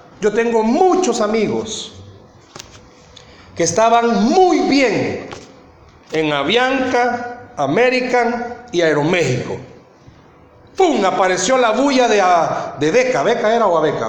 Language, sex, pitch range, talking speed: Spanish, male, 180-255 Hz, 110 wpm